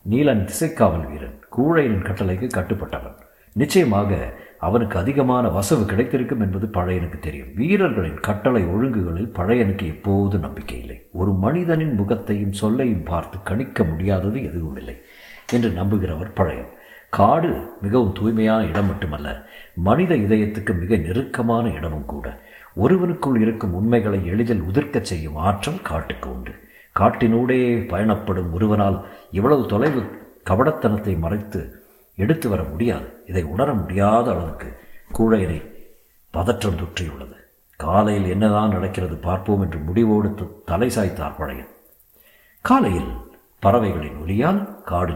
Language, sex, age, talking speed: Tamil, male, 50-69, 105 wpm